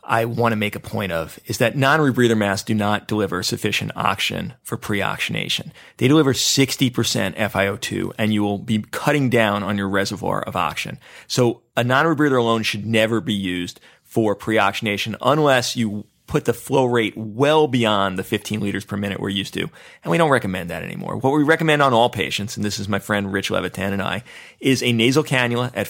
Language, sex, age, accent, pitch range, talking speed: English, male, 30-49, American, 105-135 Hz, 195 wpm